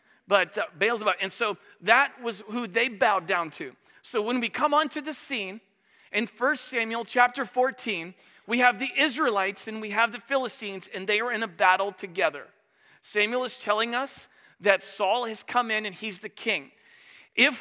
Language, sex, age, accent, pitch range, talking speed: English, male, 40-59, American, 185-235 Hz, 185 wpm